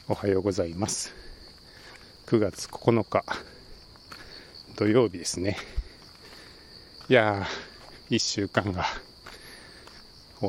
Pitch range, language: 95-120 Hz, Japanese